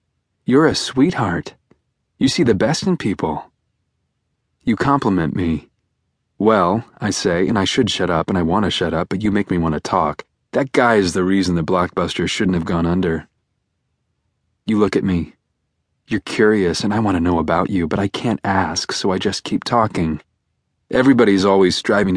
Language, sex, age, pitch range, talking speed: English, male, 30-49, 90-105 Hz, 185 wpm